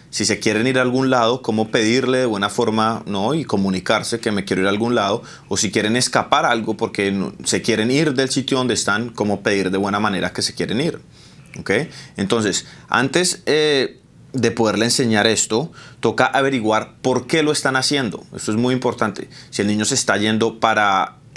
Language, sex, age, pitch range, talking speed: English, male, 30-49, 100-125 Hz, 200 wpm